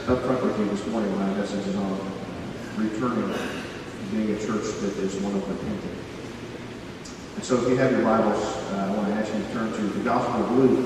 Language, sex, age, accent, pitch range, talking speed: English, male, 40-59, American, 110-130 Hz, 220 wpm